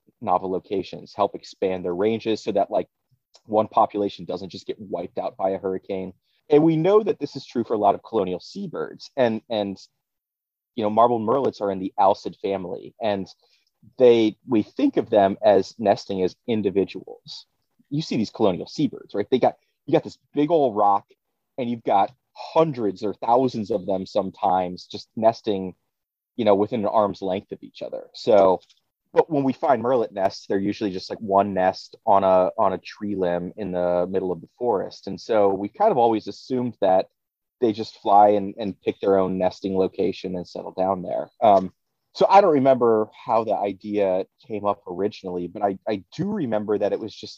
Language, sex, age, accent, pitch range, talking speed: English, male, 30-49, American, 95-115 Hz, 195 wpm